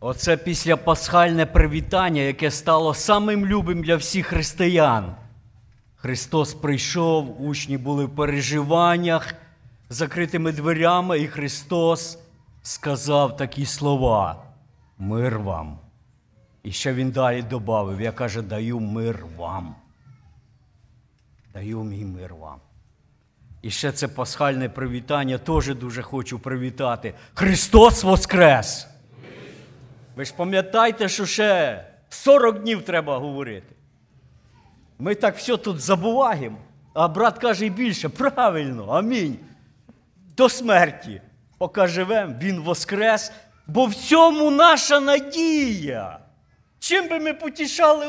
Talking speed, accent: 110 wpm, native